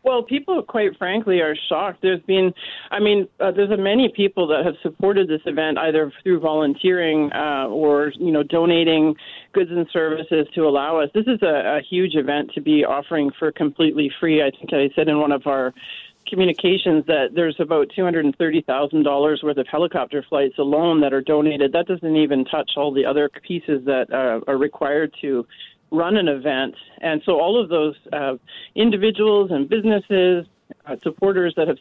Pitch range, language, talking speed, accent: 145-175 Hz, English, 185 wpm, American